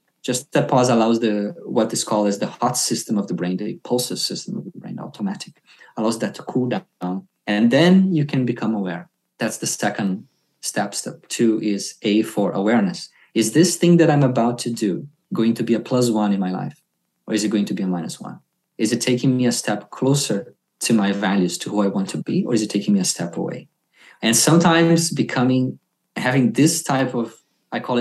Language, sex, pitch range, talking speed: English, male, 105-145 Hz, 220 wpm